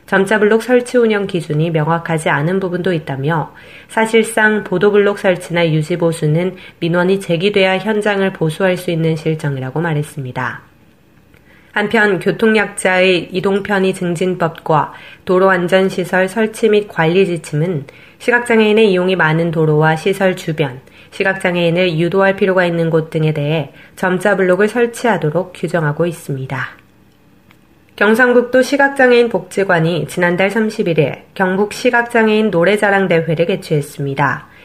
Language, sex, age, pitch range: Korean, female, 20-39, 165-205 Hz